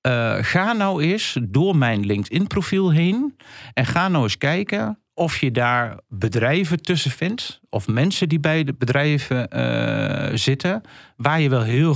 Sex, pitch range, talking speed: male, 115-150 Hz, 155 wpm